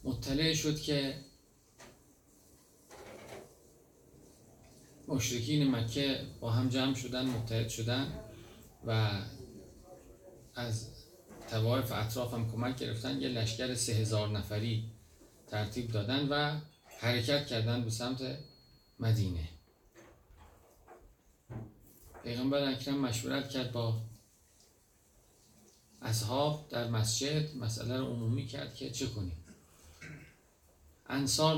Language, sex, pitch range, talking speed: Persian, male, 110-130 Hz, 90 wpm